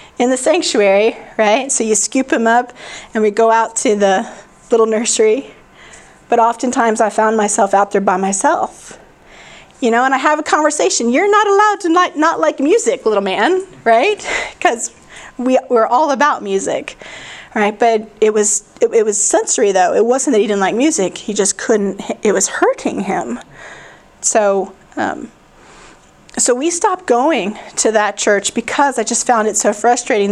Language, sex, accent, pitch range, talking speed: English, female, American, 210-270 Hz, 175 wpm